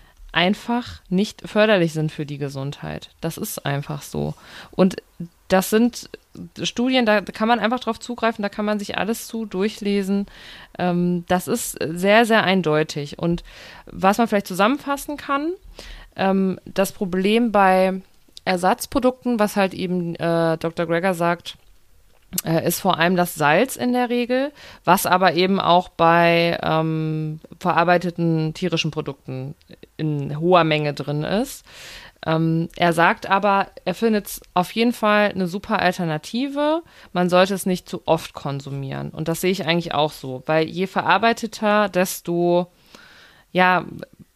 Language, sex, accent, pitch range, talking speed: German, female, German, 165-210 Hz, 140 wpm